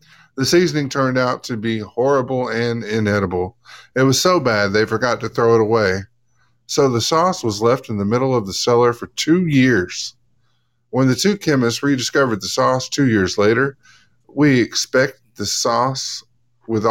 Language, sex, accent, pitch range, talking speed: English, male, American, 110-135 Hz, 170 wpm